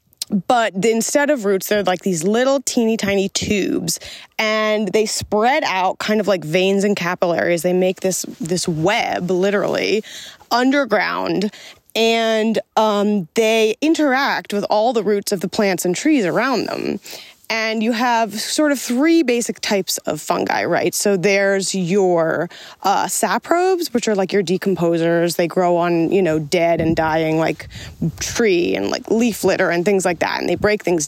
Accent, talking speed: American, 165 wpm